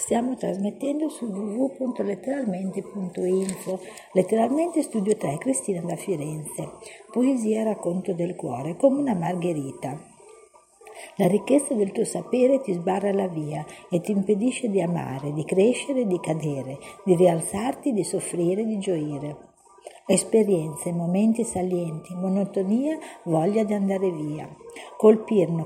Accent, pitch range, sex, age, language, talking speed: native, 180-230 Hz, female, 50-69, Italian, 115 wpm